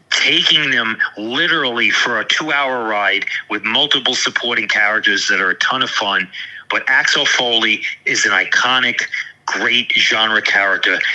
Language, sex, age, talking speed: English, male, 40-59, 140 wpm